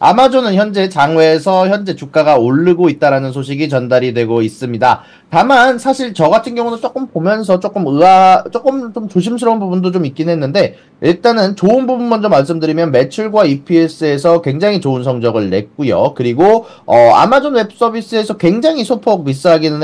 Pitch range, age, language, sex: 135-210 Hz, 30-49, Korean, male